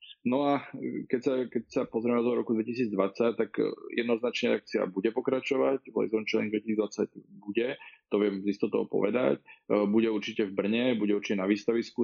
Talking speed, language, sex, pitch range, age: 155 wpm, Slovak, male, 100-115 Hz, 20-39